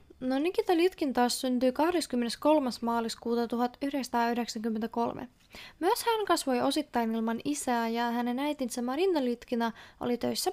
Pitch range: 235-315 Hz